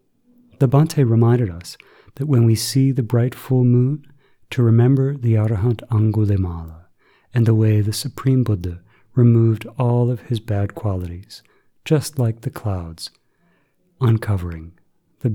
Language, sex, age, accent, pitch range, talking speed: English, male, 50-69, American, 100-125 Hz, 135 wpm